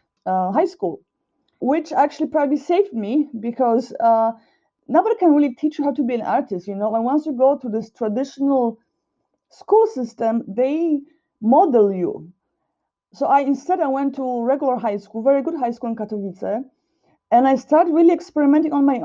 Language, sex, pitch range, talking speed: English, female, 210-275 Hz, 175 wpm